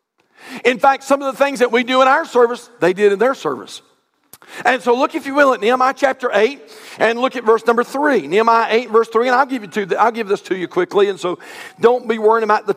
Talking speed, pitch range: 265 wpm, 210-265 Hz